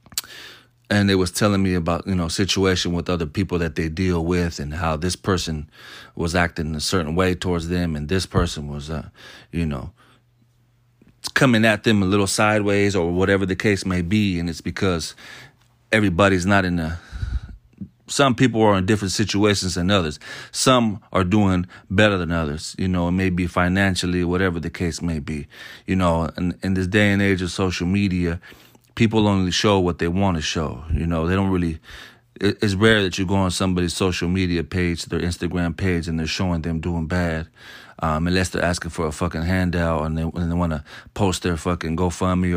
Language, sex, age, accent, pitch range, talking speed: English, male, 30-49, American, 85-100 Hz, 195 wpm